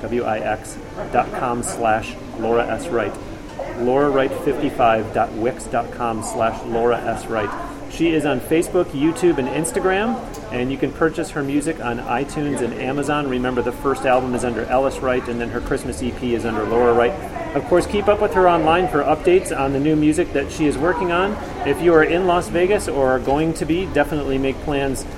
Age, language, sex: 30-49, English, male